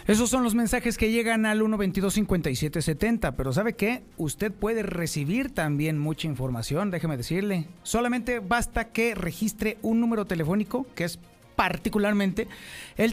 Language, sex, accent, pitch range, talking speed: Spanish, male, Mexican, 170-225 Hz, 145 wpm